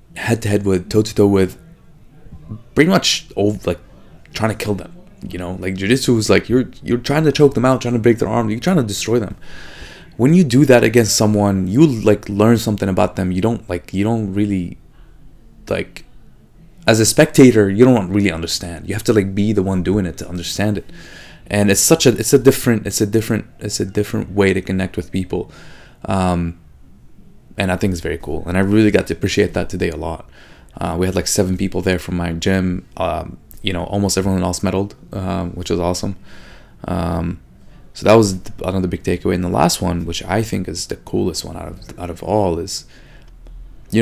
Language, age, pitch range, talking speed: English, 20-39, 90-110 Hz, 215 wpm